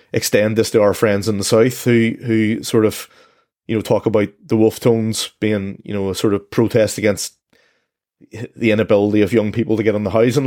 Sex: male